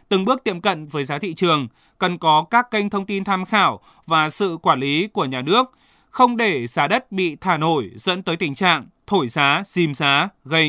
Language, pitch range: Vietnamese, 155-205 Hz